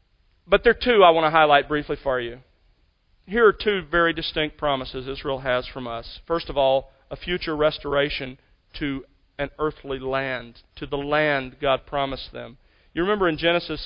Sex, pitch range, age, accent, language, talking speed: male, 135-180 Hz, 40-59, American, English, 180 wpm